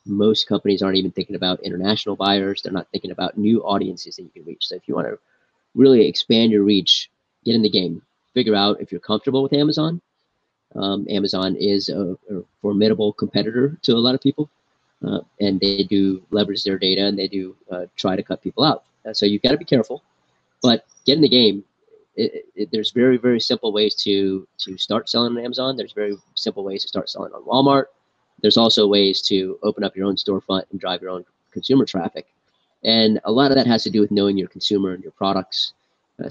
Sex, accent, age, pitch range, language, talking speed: male, American, 30-49, 95-120 Hz, English, 215 wpm